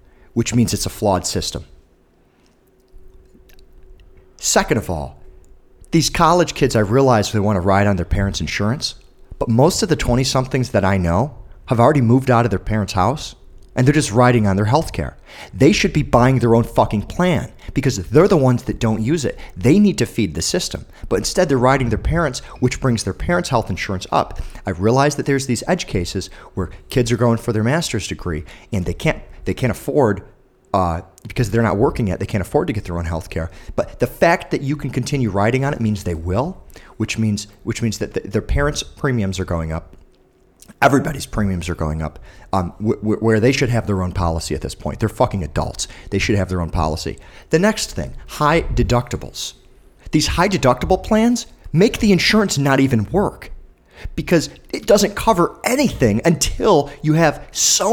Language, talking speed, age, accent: English, 200 wpm, 40-59, American